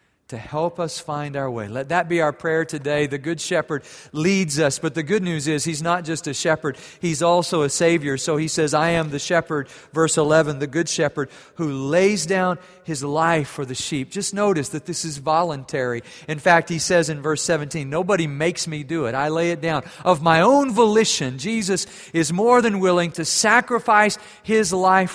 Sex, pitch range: male, 150-185 Hz